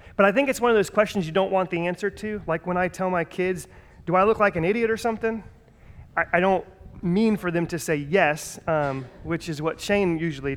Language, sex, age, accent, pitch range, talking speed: English, male, 30-49, American, 150-195 Hz, 245 wpm